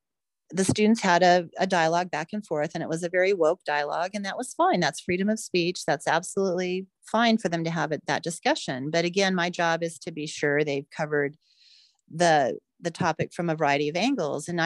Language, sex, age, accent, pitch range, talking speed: English, female, 40-59, American, 160-210 Hz, 215 wpm